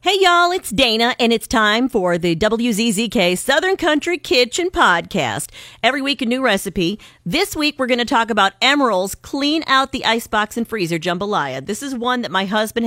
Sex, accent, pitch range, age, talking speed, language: female, American, 180-255 Hz, 40-59, 185 wpm, English